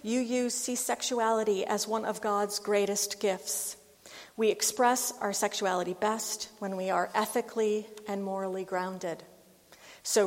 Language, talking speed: English, 135 wpm